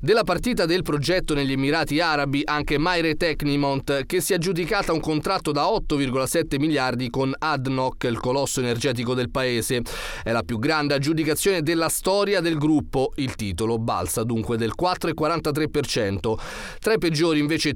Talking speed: 150 wpm